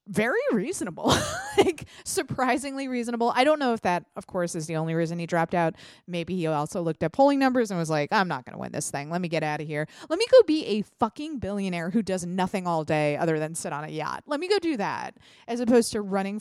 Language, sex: English, female